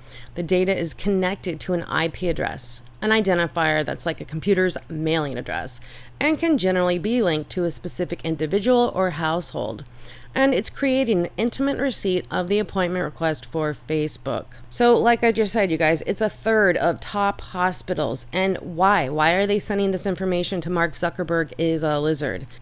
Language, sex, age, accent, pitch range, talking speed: English, female, 30-49, American, 155-205 Hz, 175 wpm